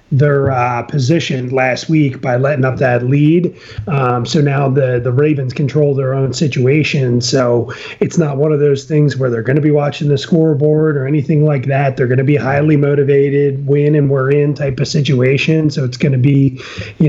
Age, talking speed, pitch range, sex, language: 30-49, 205 wpm, 130-150 Hz, male, English